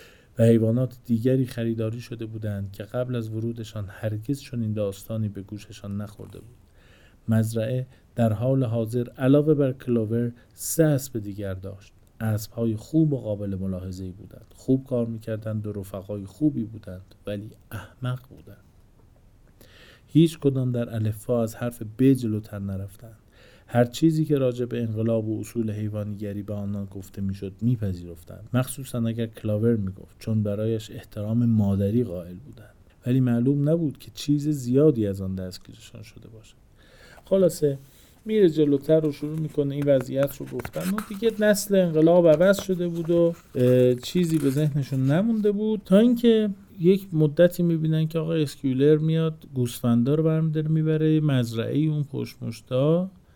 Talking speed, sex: 140 wpm, male